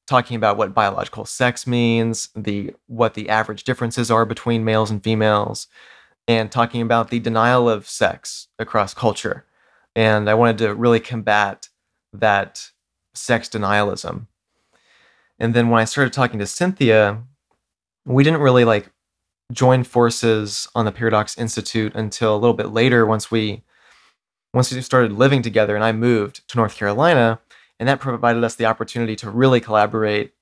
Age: 30-49